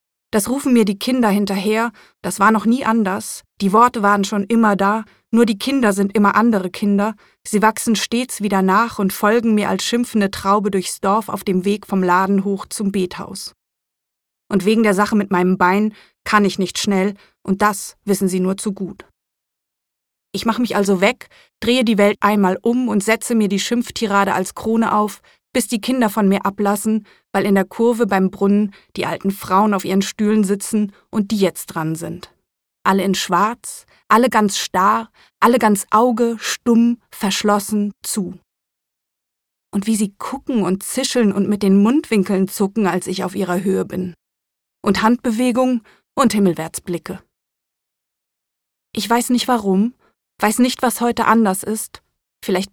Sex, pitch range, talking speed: female, 195-225 Hz, 170 wpm